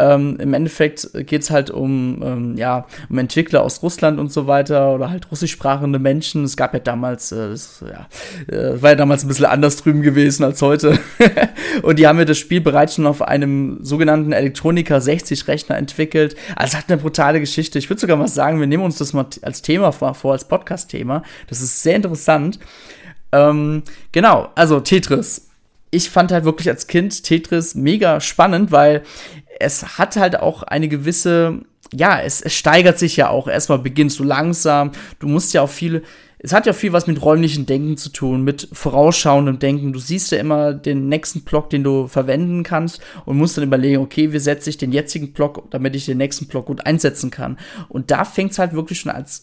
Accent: German